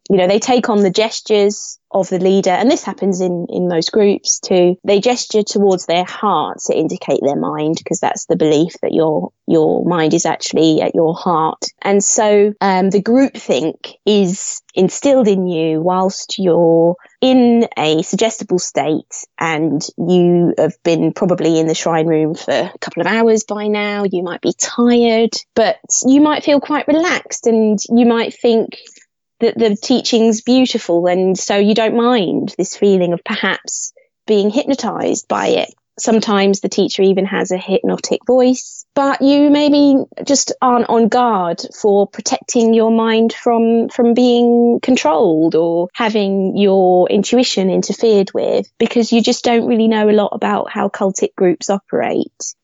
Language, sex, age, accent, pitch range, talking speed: English, female, 20-39, British, 180-235 Hz, 165 wpm